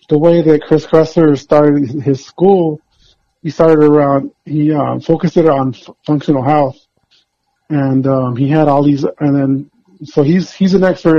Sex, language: male, English